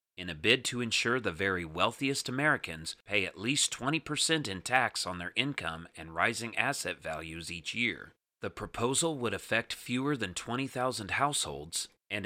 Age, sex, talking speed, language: 40-59, male, 160 wpm, English